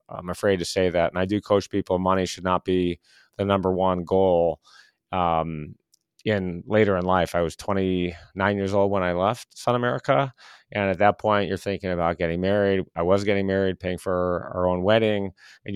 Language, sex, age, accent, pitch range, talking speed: English, male, 30-49, American, 90-105 Hz, 200 wpm